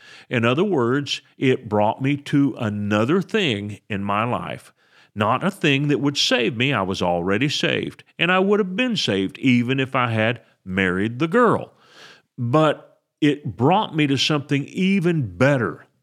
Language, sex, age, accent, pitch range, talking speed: English, male, 50-69, American, 105-150 Hz, 165 wpm